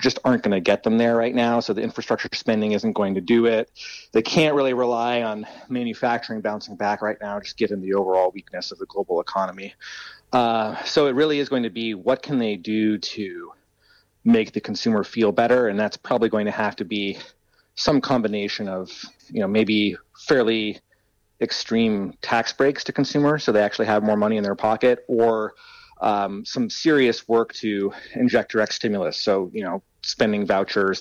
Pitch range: 105-130 Hz